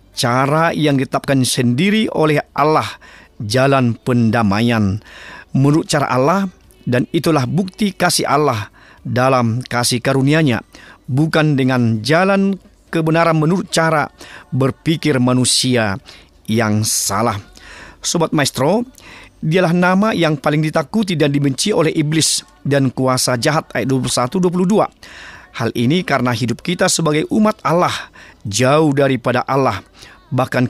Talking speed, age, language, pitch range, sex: 110 wpm, 40-59, Indonesian, 120-160 Hz, male